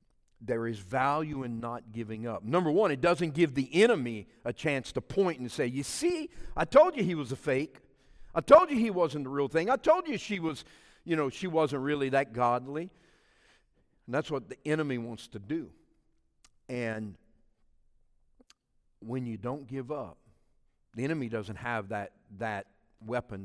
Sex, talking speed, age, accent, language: male, 180 wpm, 50-69, American, English